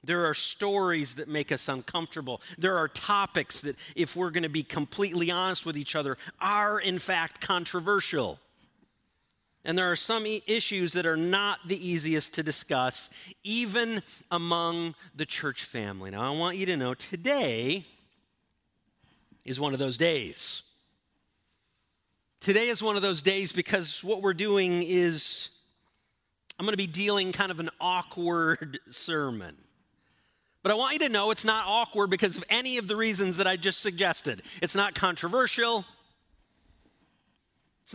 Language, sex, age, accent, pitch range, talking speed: English, male, 40-59, American, 150-205 Hz, 155 wpm